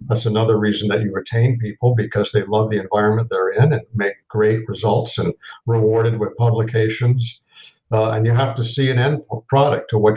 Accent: American